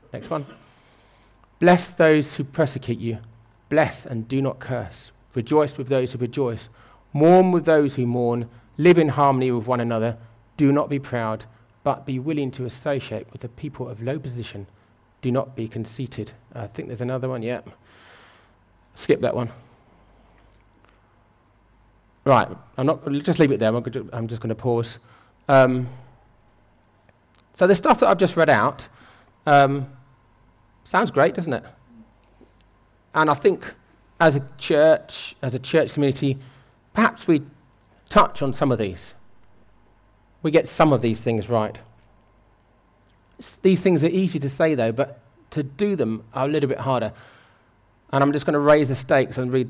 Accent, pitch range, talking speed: British, 115-140 Hz, 160 wpm